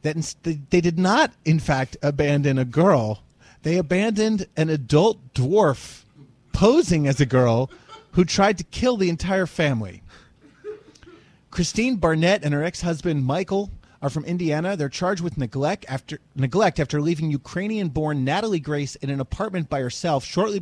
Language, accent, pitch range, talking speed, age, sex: English, American, 140-185 Hz, 150 wpm, 30-49, male